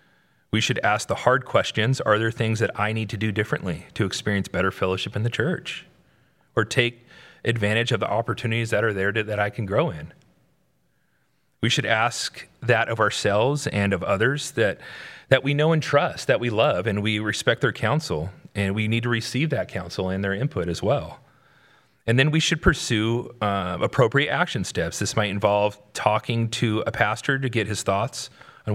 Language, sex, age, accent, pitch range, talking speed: English, male, 40-59, American, 100-125 Hz, 195 wpm